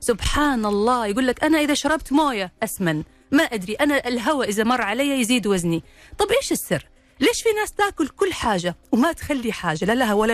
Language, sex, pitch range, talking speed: Arabic, female, 195-280 Hz, 190 wpm